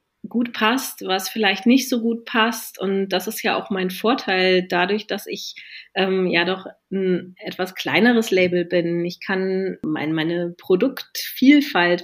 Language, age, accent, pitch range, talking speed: German, 30-49, German, 180-210 Hz, 155 wpm